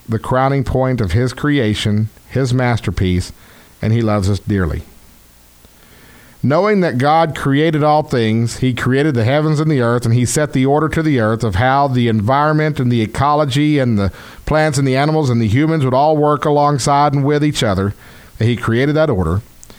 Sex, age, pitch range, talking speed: male, 50-69, 90-135 Hz, 190 wpm